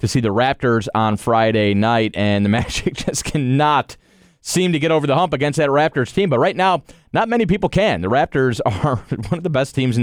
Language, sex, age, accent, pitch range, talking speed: English, male, 30-49, American, 120-160 Hz, 225 wpm